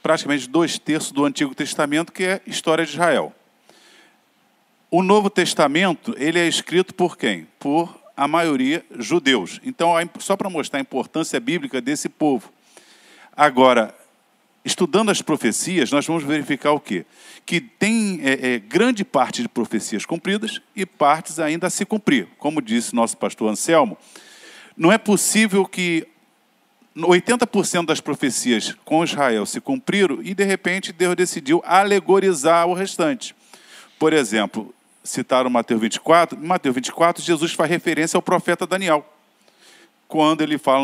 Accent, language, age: Brazilian, Portuguese, 50-69